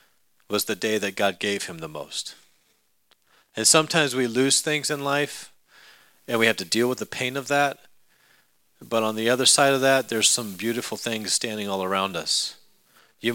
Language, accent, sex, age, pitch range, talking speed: English, American, male, 40-59, 100-130 Hz, 190 wpm